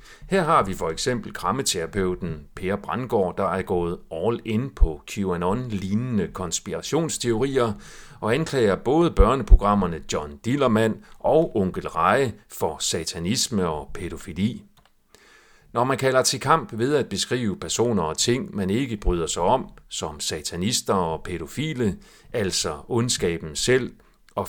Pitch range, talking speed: 90-120 Hz, 130 wpm